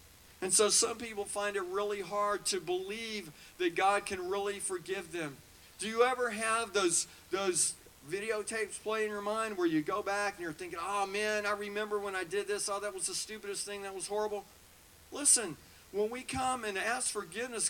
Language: English